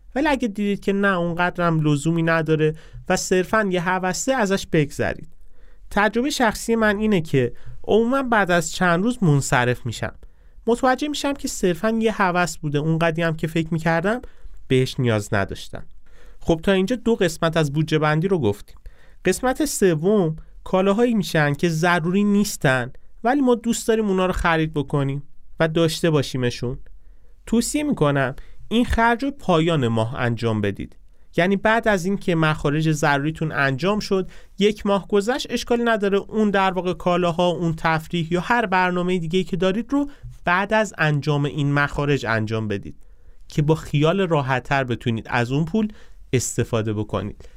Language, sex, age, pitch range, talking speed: Persian, male, 30-49, 130-200 Hz, 155 wpm